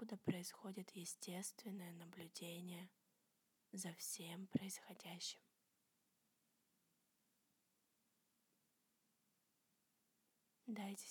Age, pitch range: 20-39, 185-220 Hz